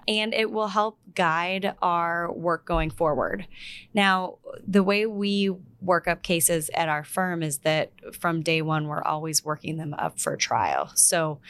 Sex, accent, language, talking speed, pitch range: female, American, English, 165 wpm, 150-175 Hz